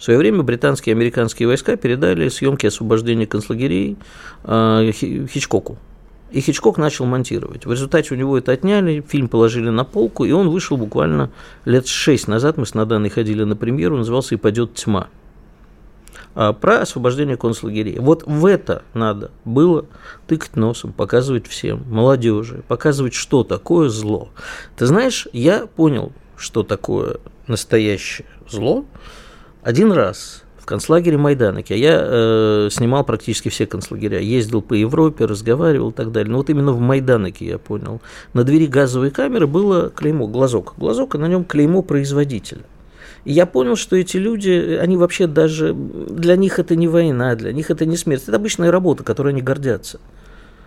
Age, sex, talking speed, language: 50-69, male, 155 wpm, Russian